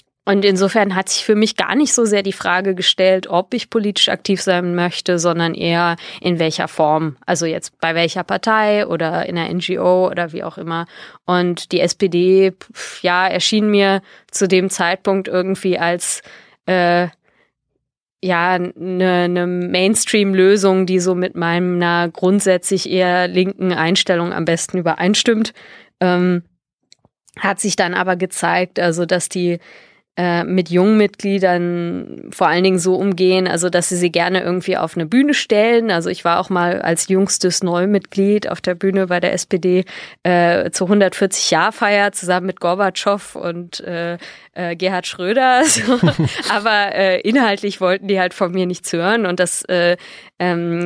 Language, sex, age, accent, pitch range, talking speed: German, female, 20-39, German, 175-195 Hz, 155 wpm